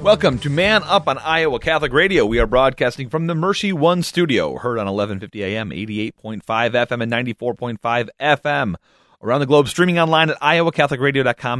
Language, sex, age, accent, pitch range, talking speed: English, male, 30-49, American, 90-130 Hz, 165 wpm